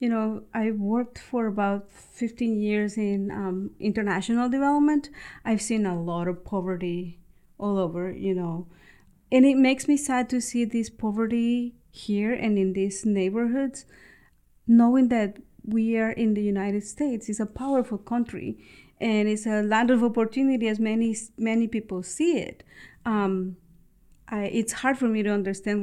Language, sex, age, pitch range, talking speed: English, female, 40-59, 200-245 Hz, 160 wpm